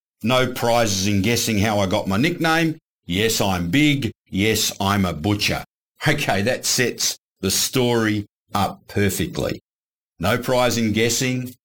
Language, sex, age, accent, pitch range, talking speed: English, male, 50-69, Australian, 95-125 Hz, 140 wpm